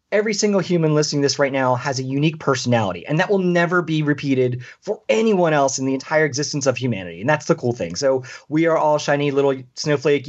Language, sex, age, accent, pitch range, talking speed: English, male, 30-49, American, 130-170 Hz, 225 wpm